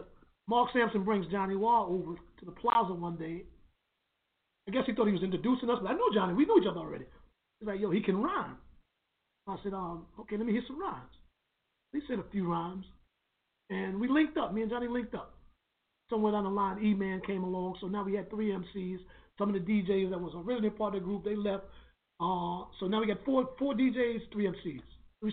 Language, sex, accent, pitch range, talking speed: English, male, American, 185-220 Hz, 225 wpm